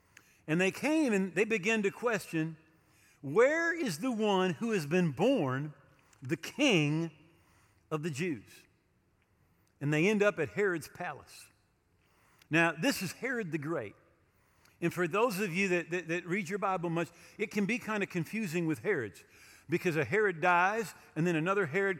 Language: English